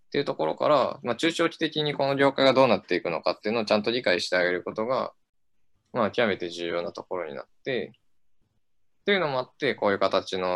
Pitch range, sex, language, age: 95-115 Hz, male, Japanese, 20-39